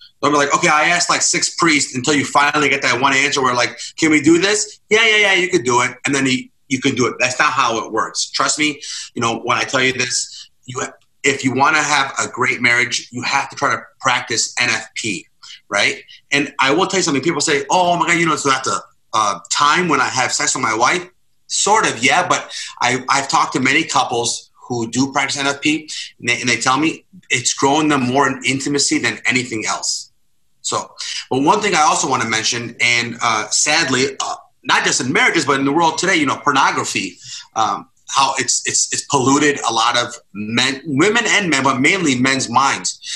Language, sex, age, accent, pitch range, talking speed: English, male, 30-49, American, 125-160 Hz, 225 wpm